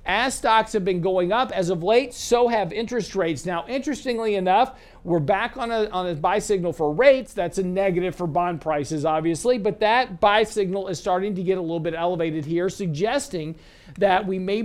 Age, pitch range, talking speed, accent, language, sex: 50-69, 165-200 Hz, 205 wpm, American, English, male